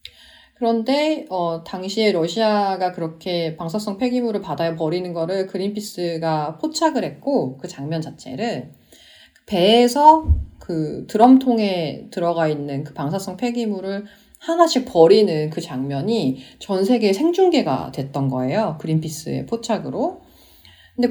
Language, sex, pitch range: Korean, female, 155-225 Hz